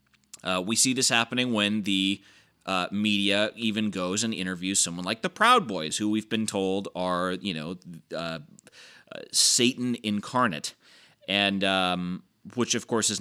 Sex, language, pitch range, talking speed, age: male, English, 95-110 Hz, 155 wpm, 30-49